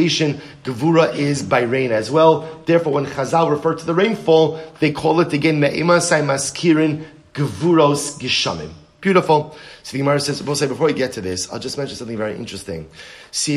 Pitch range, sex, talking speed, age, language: 115-155 Hz, male, 160 wpm, 30-49, English